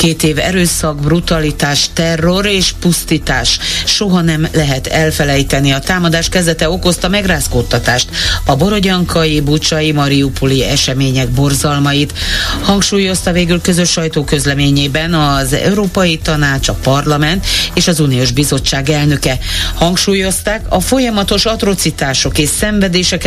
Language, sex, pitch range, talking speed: Hungarian, female, 135-180 Hz, 110 wpm